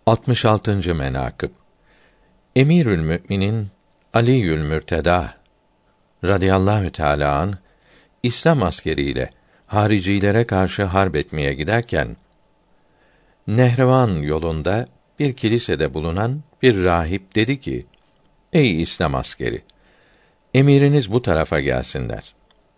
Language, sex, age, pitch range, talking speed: Turkish, male, 50-69, 80-115 Hz, 85 wpm